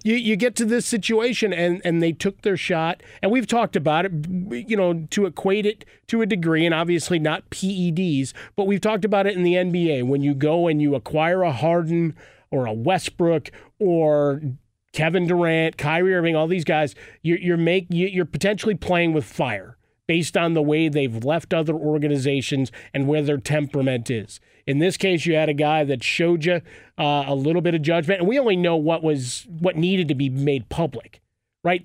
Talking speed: 200 wpm